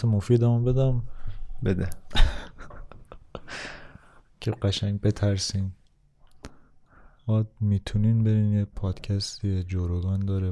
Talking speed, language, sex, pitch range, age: 75 wpm, Persian, male, 95-110 Hz, 20-39